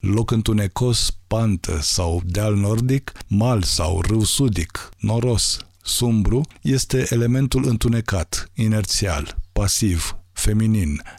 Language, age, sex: Romanian, 50-69, male